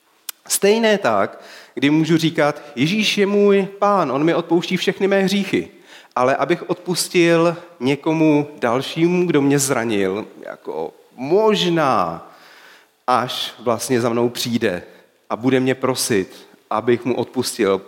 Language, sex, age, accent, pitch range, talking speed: Czech, male, 40-59, native, 125-195 Hz, 125 wpm